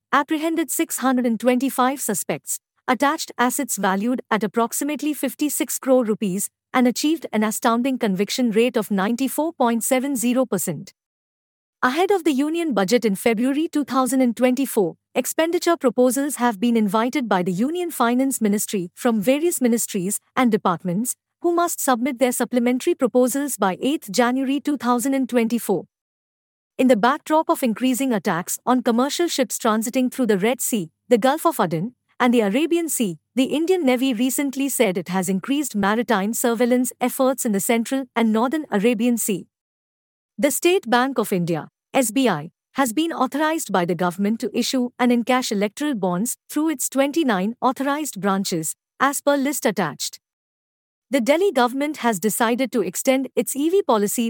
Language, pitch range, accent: English, 215-275 Hz, Indian